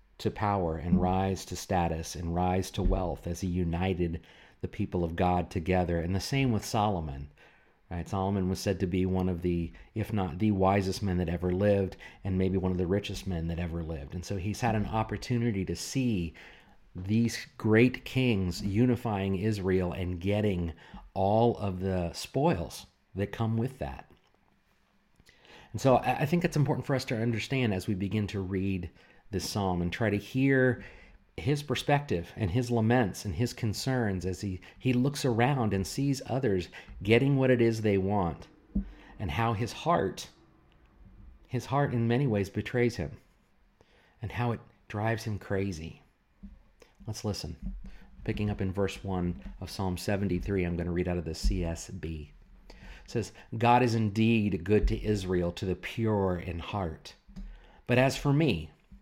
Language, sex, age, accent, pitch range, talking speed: English, male, 50-69, American, 90-115 Hz, 170 wpm